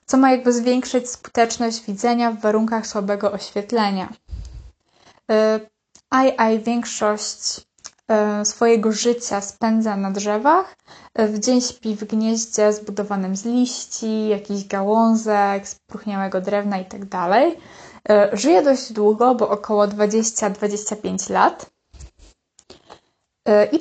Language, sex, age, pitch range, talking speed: Polish, female, 20-39, 210-240 Hz, 95 wpm